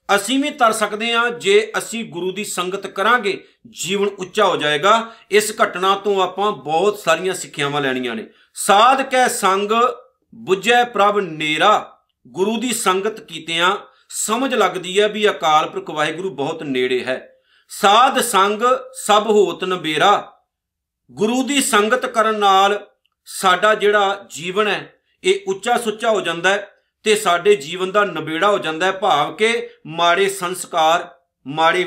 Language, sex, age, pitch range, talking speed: Punjabi, male, 50-69, 170-225 Hz, 135 wpm